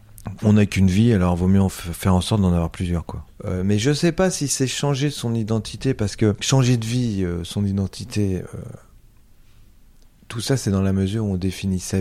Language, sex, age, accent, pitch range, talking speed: French, male, 40-59, French, 95-120 Hz, 235 wpm